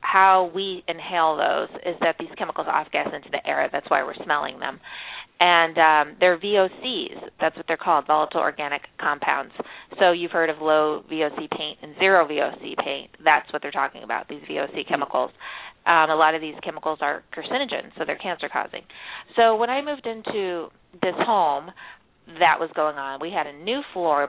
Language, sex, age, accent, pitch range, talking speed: English, female, 30-49, American, 160-190 Hz, 185 wpm